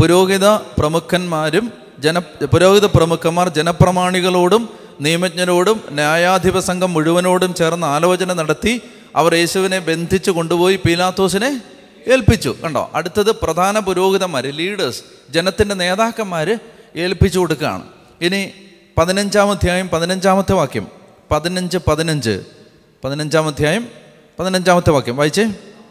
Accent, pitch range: native, 155-195 Hz